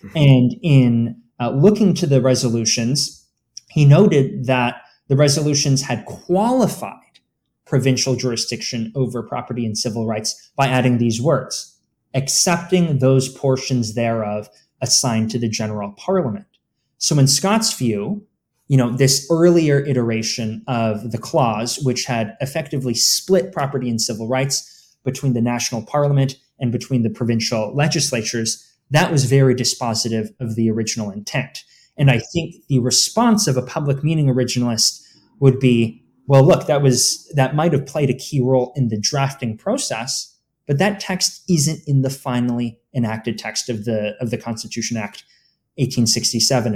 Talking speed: 145 wpm